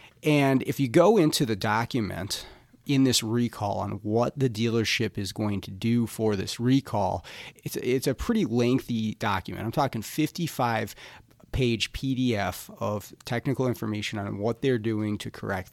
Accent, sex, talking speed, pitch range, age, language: American, male, 150 wpm, 105-125 Hz, 30-49, English